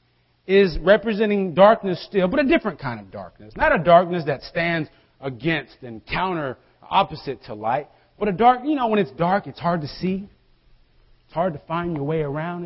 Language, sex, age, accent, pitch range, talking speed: English, male, 40-59, American, 115-185 Hz, 190 wpm